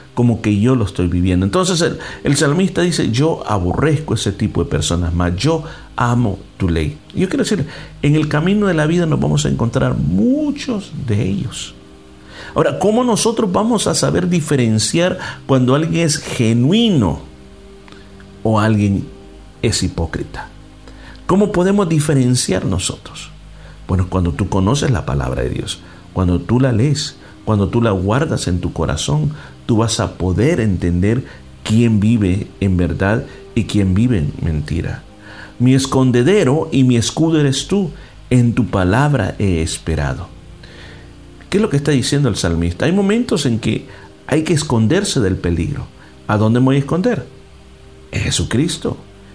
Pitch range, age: 95-155 Hz, 50-69